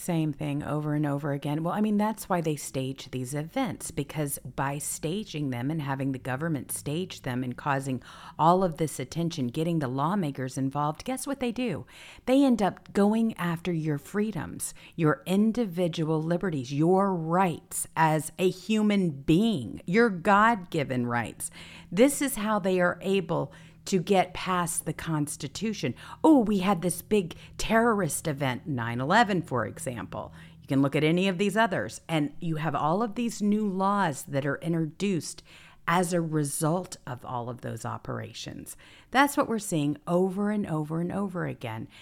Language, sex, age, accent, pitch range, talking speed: English, female, 50-69, American, 135-185 Hz, 165 wpm